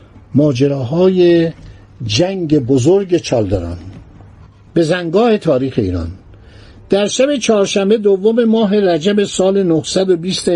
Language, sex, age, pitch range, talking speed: Persian, male, 60-79, 140-205 Hz, 90 wpm